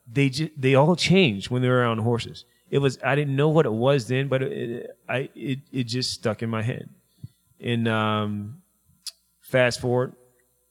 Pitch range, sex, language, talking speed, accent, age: 105-130 Hz, male, English, 180 wpm, American, 30-49